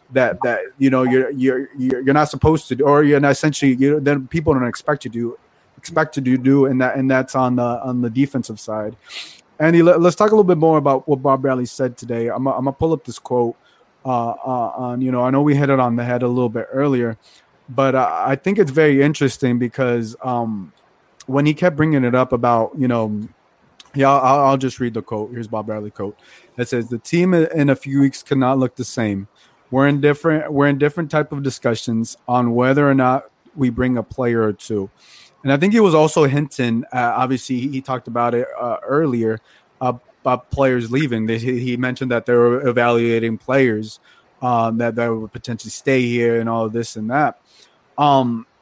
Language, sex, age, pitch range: English, male, 30-49, 120-140 Hz